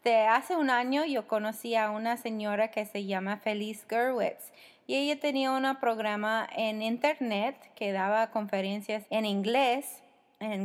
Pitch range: 205-250 Hz